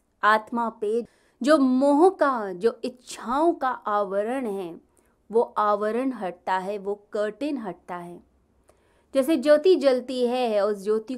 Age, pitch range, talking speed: 30-49, 195-260 Hz, 130 wpm